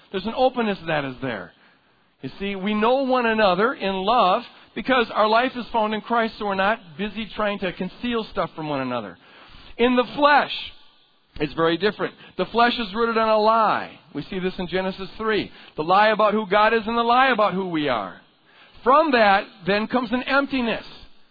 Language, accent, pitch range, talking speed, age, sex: English, American, 195-240 Hz, 200 wpm, 50-69, male